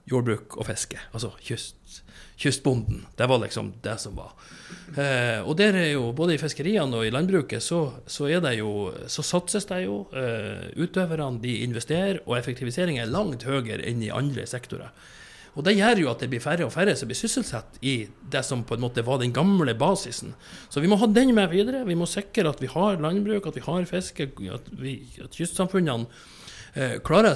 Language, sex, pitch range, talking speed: English, male, 120-180 Hz, 195 wpm